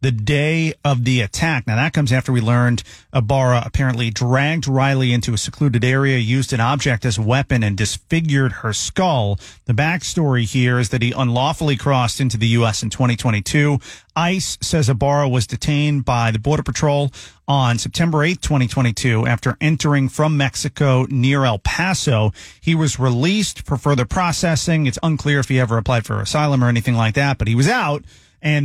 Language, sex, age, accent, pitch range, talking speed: English, male, 40-59, American, 120-150 Hz, 180 wpm